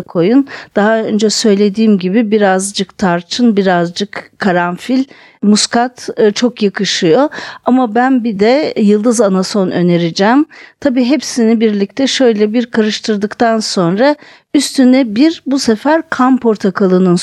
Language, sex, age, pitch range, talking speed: Turkish, female, 50-69, 200-260 Hz, 110 wpm